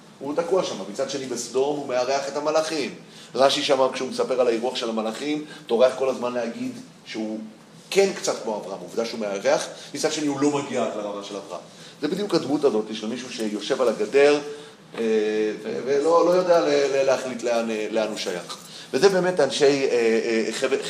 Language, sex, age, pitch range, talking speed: Hebrew, male, 30-49, 115-170 Hz, 170 wpm